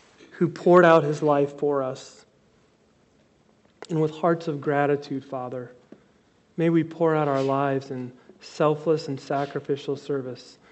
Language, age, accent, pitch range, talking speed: English, 40-59, American, 135-165 Hz, 135 wpm